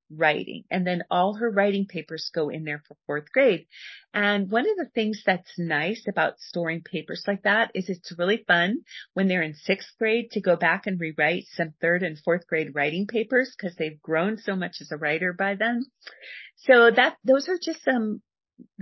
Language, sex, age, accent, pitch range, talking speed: English, female, 40-59, American, 170-220 Hz, 200 wpm